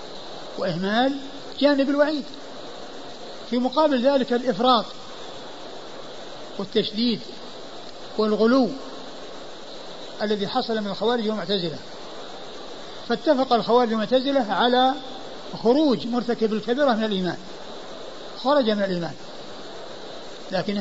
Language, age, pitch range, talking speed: Arabic, 60-79, 210-260 Hz, 80 wpm